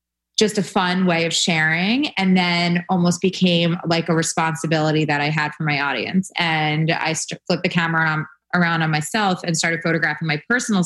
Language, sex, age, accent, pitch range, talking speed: English, female, 20-39, American, 155-180 Hz, 175 wpm